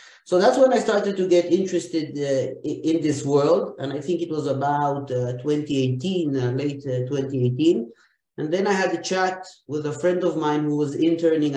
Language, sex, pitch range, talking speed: Turkish, male, 135-170 Hz, 195 wpm